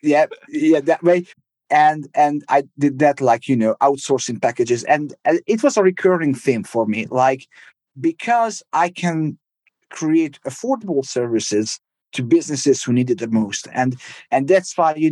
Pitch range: 130-175 Hz